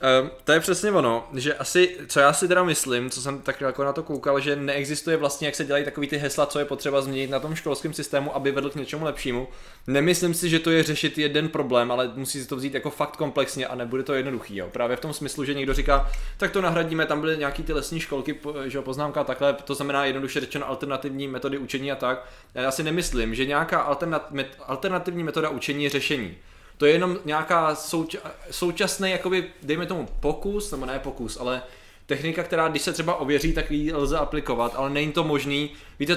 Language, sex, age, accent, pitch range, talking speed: Czech, male, 20-39, native, 135-155 Hz, 215 wpm